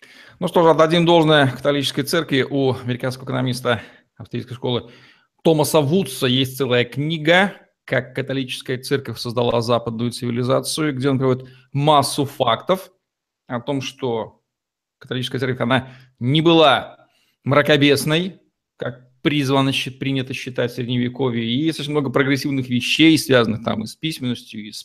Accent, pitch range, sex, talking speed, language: native, 120-145 Hz, male, 135 wpm, Russian